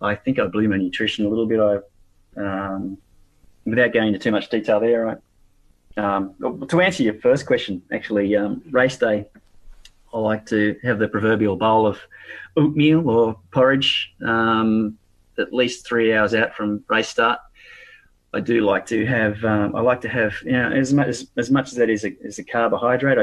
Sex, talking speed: male, 190 wpm